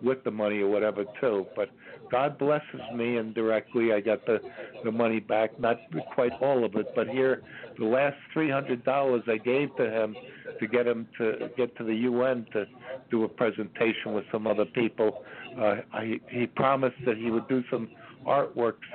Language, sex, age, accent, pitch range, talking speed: English, male, 60-79, American, 110-130 Hz, 180 wpm